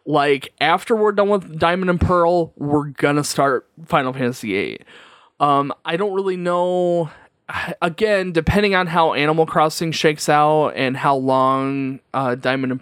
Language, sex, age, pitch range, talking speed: English, male, 20-39, 130-165 Hz, 155 wpm